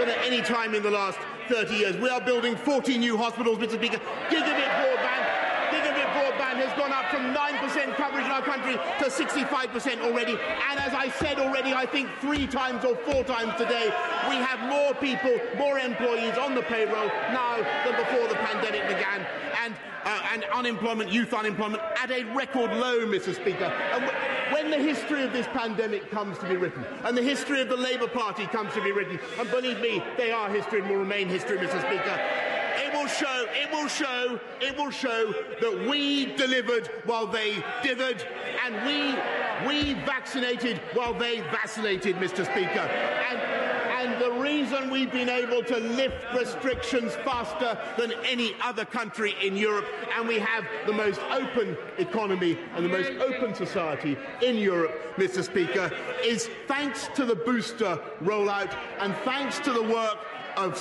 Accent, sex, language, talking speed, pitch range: British, male, English, 170 wpm, 220-265 Hz